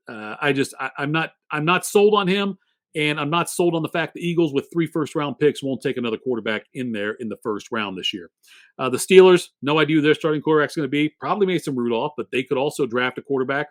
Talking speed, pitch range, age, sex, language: 265 wpm, 130-180 Hz, 40-59, male, English